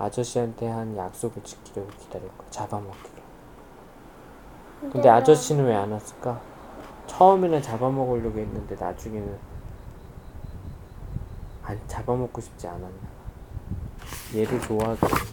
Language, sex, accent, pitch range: Korean, male, native, 105-145 Hz